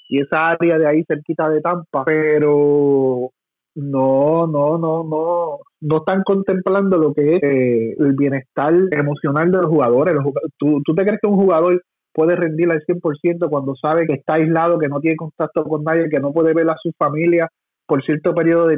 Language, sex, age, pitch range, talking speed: Spanish, male, 30-49, 150-170 Hz, 185 wpm